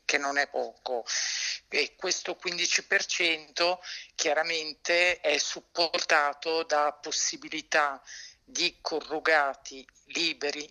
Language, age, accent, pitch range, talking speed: Italian, 50-69, native, 135-155 Hz, 85 wpm